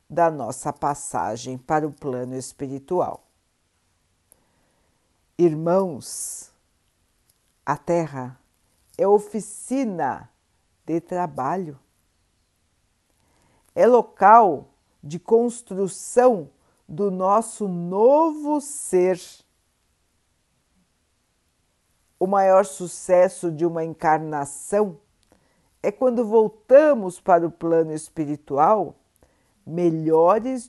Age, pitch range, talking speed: 50-69, 135-200 Hz, 70 wpm